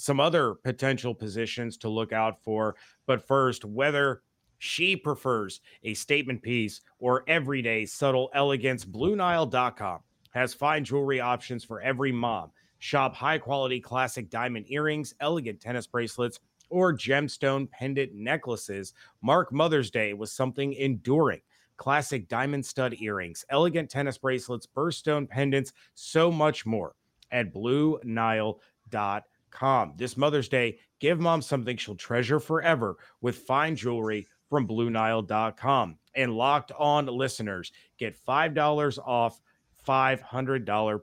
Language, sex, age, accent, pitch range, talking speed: English, male, 30-49, American, 115-145 Hz, 120 wpm